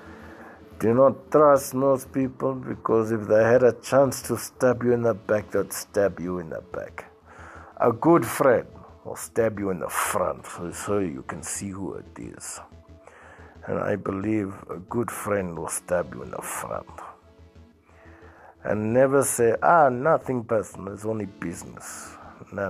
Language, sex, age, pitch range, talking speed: Finnish, male, 60-79, 95-130 Hz, 160 wpm